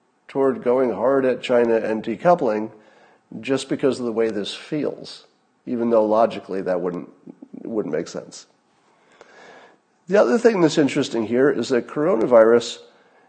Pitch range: 110-135 Hz